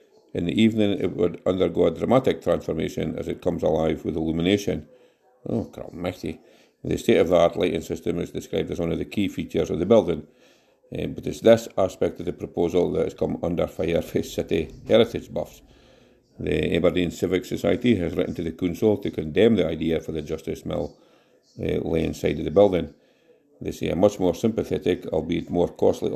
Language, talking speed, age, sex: English, 180 wpm, 50-69, male